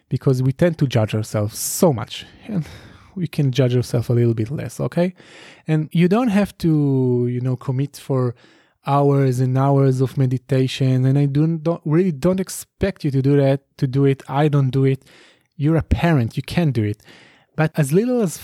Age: 20-39